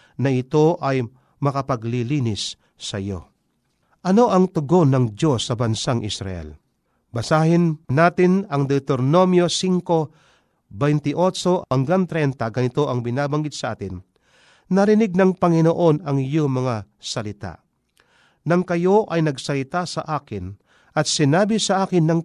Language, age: Filipino, 50-69